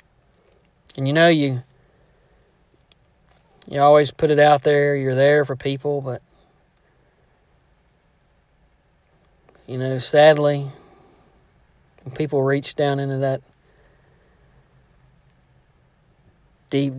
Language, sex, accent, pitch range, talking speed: English, male, American, 130-150 Hz, 90 wpm